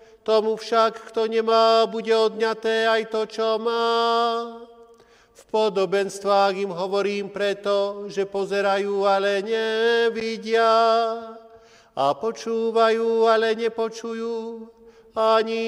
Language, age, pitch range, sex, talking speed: Slovak, 40-59, 220-230 Hz, male, 90 wpm